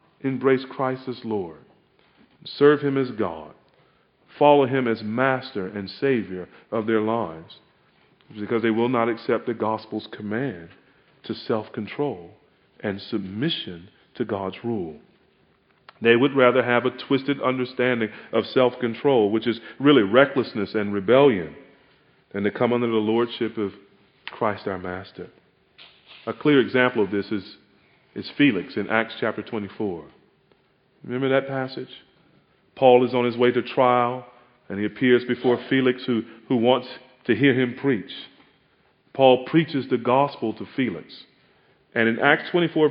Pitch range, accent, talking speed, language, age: 110-145 Hz, American, 140 wpm, English, 40-59